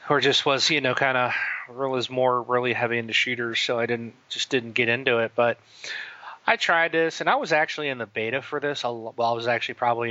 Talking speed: 230 wpm